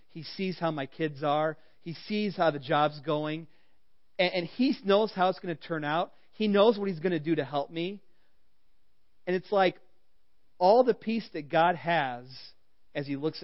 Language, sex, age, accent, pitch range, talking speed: English, male, 40-59, American, 135-185 Hz, 195 wpm